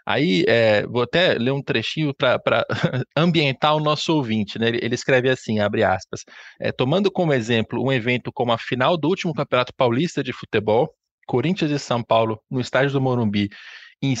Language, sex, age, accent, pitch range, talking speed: Portuguese, male, 20-39, Brazilian, 125-155 Hz, 170 wpm